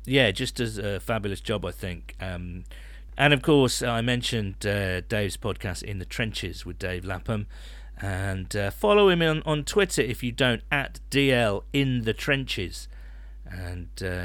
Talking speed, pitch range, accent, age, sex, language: 165 wpm, 95-145 Hz, British, 40-59, male, English